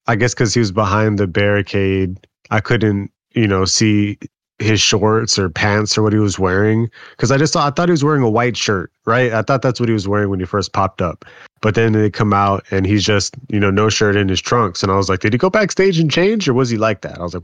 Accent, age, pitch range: American, 20-39, 95-115 Hz